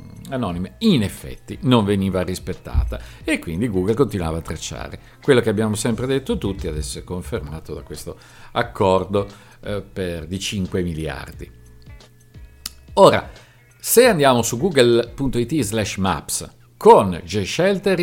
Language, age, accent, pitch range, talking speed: Italian, 50-69, native, 90-135 Hz, 125 wpm